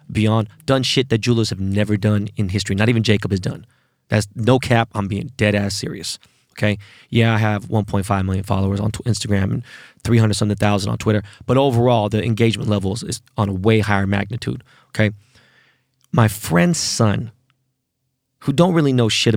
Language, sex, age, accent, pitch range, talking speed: English, male, 20-39, American, 105-130 Hz, 180 wpm